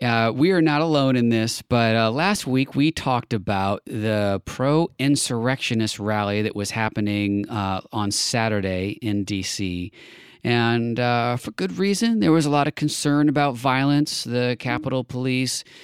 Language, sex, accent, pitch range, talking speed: English, male, American, 105-140 Hz, 155 wpm